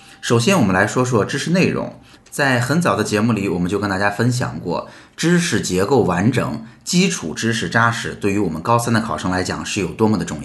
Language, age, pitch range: Chinese, 20-39, 100-135 Hz